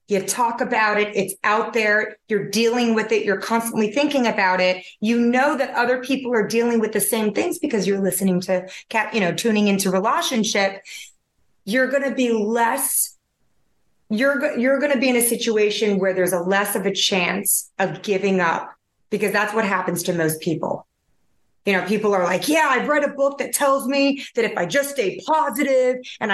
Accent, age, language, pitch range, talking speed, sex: American, 30-49, English, 195-250 Hz, 195 wpm, female